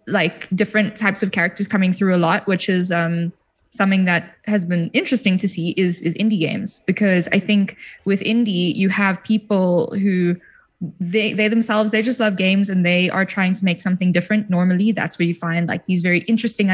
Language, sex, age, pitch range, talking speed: English, female, 10-29, 180-210 Hz, 200 wpm